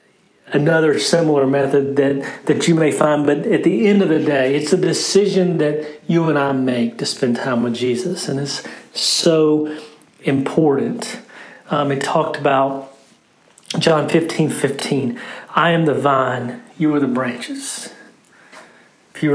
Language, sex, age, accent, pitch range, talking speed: English, male, 40-59, American, 135-160 Hz, 150 wpm